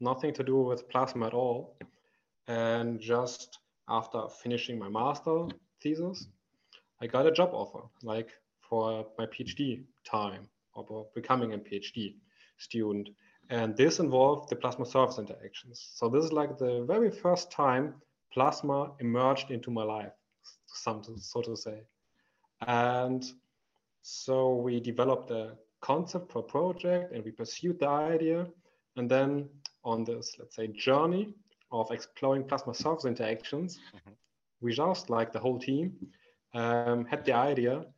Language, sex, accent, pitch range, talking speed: English, male, German, 115-145 Hz, 135 wpm